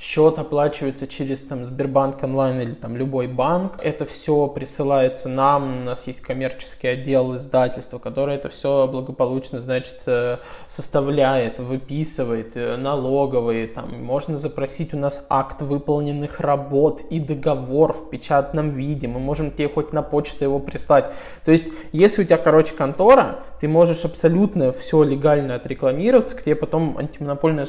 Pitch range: 135-165 Hz